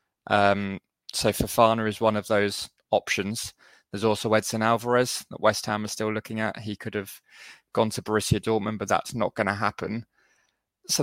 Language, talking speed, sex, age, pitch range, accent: English, 180 wpm, male, 20-39, 100-115 Hz, British